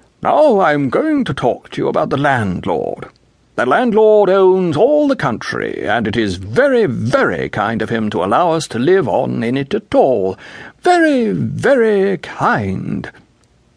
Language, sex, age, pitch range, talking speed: English, male, 60-79, 115-170 Hz, 165 wpm